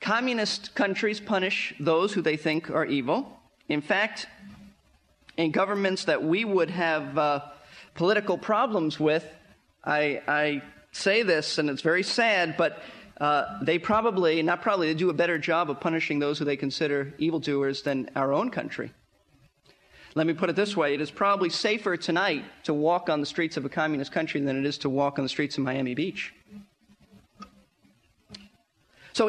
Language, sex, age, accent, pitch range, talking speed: English, male, 40-59, American, 155-210 Hz, 170 wpm